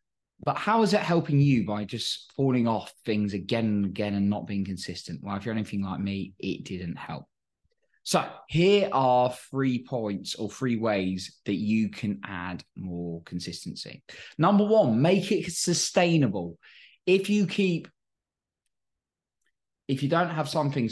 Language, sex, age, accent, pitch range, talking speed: English, male, 20-39, British, 100-140 Hz, 155 wpm